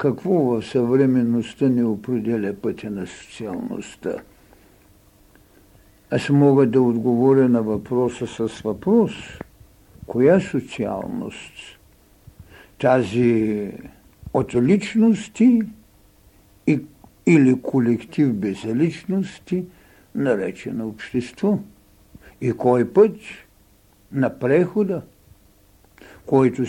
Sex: male